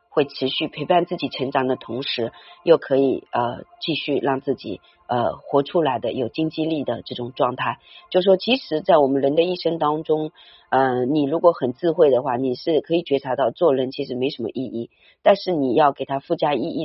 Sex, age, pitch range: female, 40-59, 130-170 Hz